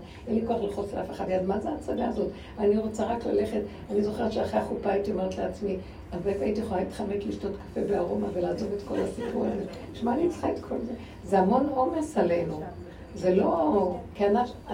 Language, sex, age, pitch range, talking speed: Hebrew, female, 60-79, 175-220 Hz, 195 wpm